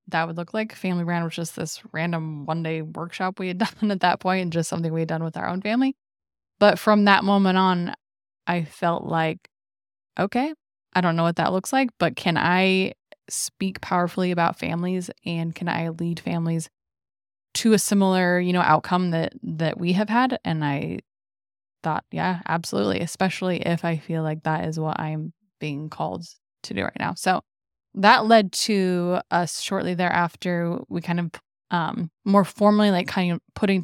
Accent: American